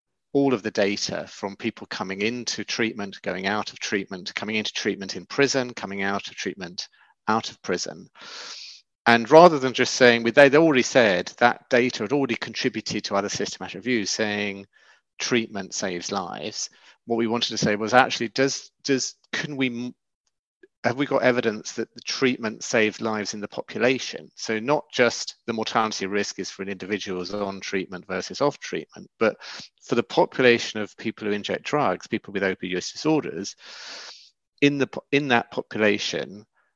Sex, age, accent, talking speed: male, 40-59, British, 170 wpm